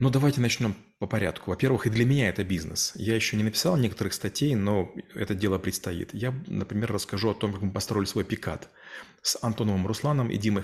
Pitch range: 100-125 Hz